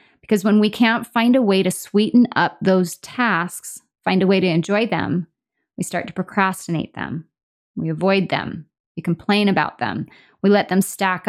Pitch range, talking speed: 170-205 Hz, 180 wpm